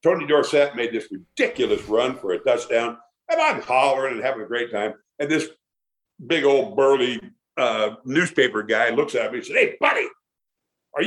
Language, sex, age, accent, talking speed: English, male, 60-79, American, 180 wpm